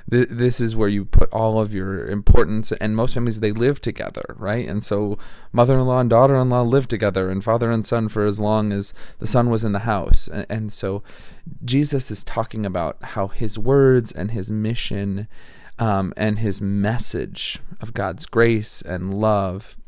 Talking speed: 175 wpm